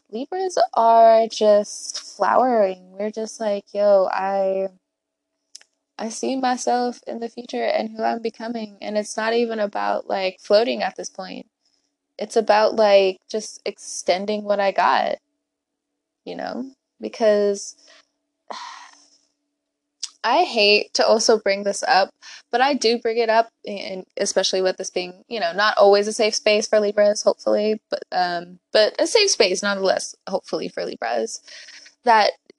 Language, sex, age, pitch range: English, female, 20-39, 195-245 Hz